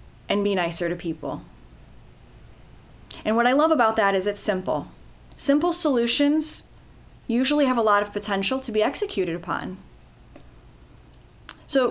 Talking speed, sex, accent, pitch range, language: 135 wpm, female, American, 195-275 Hz, English